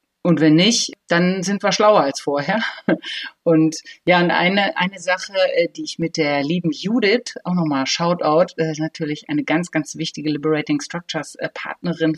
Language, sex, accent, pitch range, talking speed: German, female, German, 160-215 Hz, 170 wpm